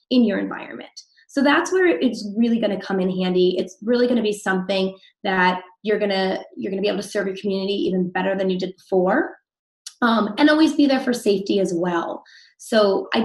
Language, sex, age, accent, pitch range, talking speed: English, female, 20-39, American, 195-250 Hz, 220 wpm